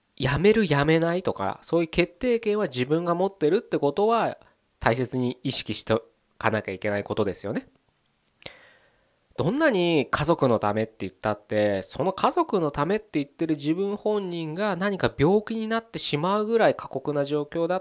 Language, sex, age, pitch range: Japanese, male, 20-39, 115-190 Hz